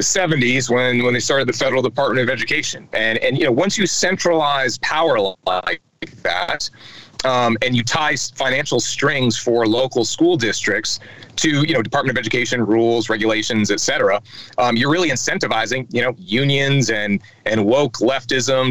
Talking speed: 165 wpm